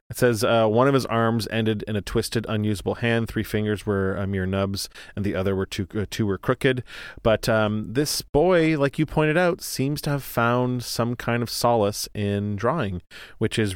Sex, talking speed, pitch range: male, 210 wpm, 95-120 Hz